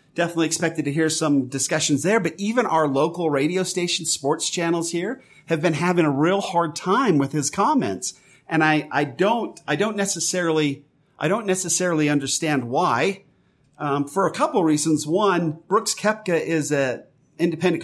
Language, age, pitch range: English, 40-59, 145-180 Hz